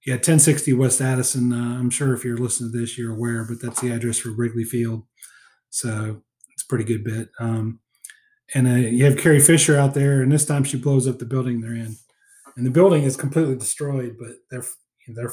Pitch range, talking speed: 120-150 Hz, 220 wpm